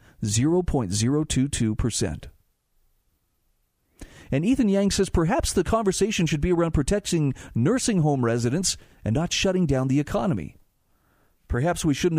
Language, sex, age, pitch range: English, male, 40-59, 125-180 Hz